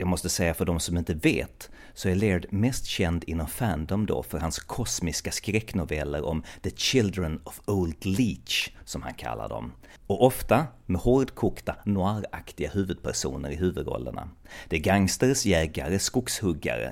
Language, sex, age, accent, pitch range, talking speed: Swedish, male, 30-49, native, 80-105 Hz, 150 wpm